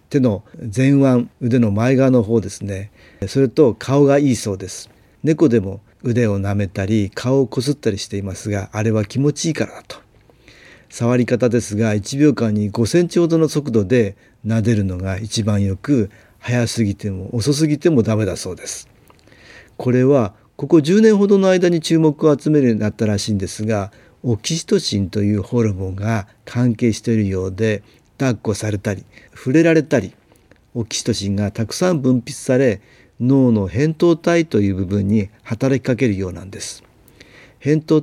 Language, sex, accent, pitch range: Japanese, male, native, 105-140 Hz